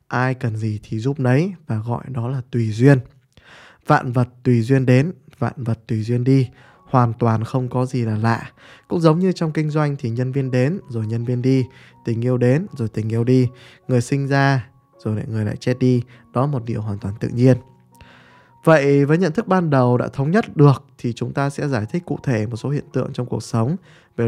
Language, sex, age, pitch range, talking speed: Vietnamese, male, 20-39, 120-145 Hz, 225 wpm